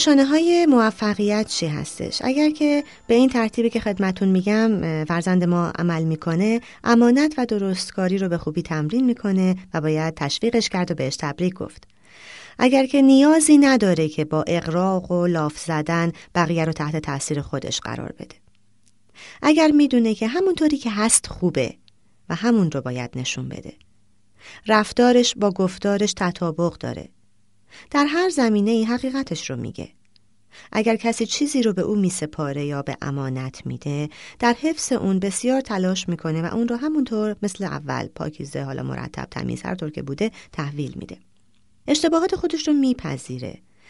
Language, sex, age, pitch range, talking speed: Persian, female, 30-49, 150-235 Hz, 150 wpm